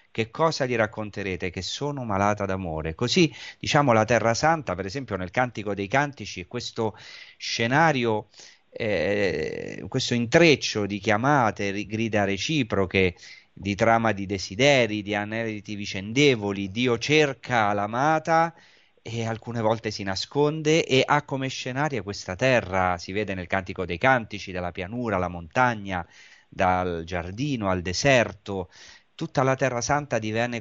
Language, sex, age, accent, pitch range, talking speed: Italian, male, 30-49, native, 95-125 Hz, 135 wpm